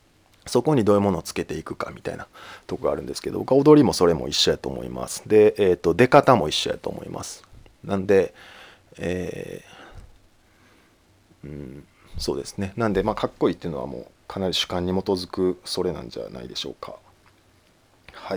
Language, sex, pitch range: Japanese, male, 90-130 Hz